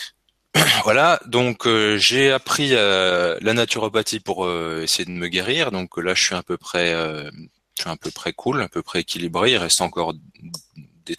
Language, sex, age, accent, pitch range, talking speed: French, male, 20-39, French, 90-115 Hz, 195 wpm